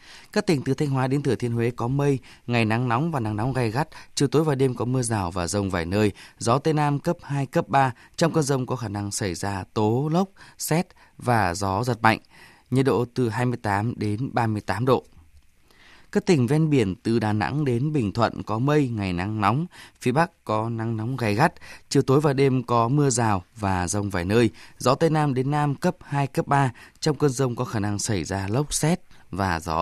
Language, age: Vietnamese, 20-39